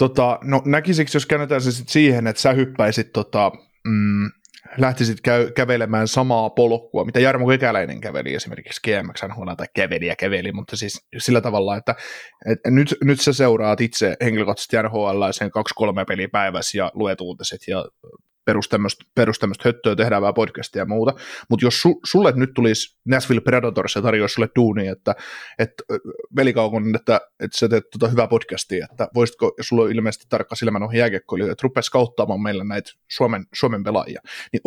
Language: Finnish